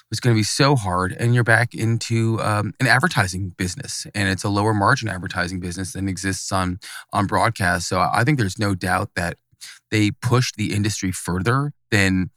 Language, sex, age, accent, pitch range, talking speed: English, male, 20-39, American, 90-105 Hz, 190 wpm